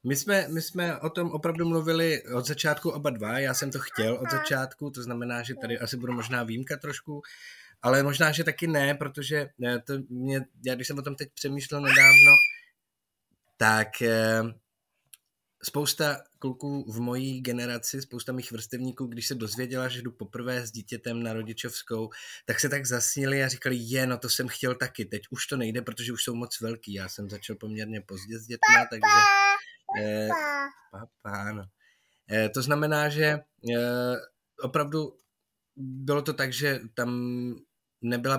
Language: Czech